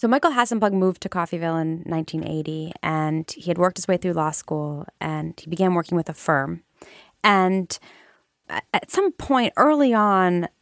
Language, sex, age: English, female, 20-39